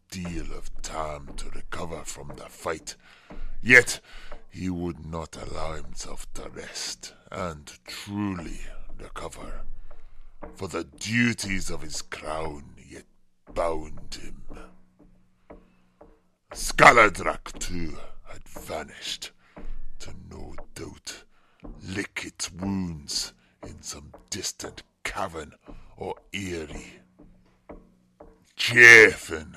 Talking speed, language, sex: 90 wpm, English, female